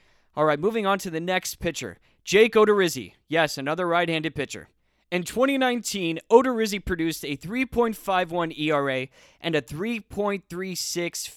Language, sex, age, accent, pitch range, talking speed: English, male, 20-39, American, 155-210 Hz, 125 wpm